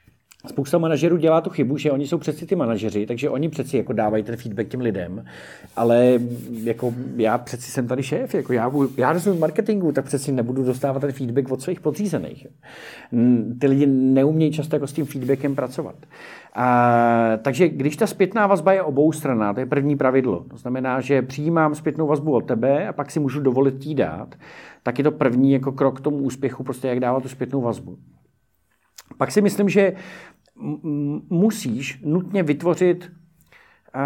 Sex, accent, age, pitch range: male, native, 40-59, 125-155 Hz